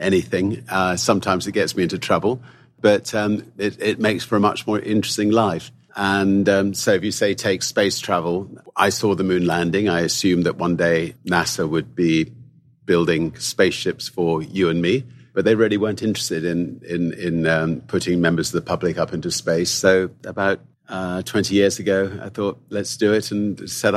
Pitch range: 85-100 Hz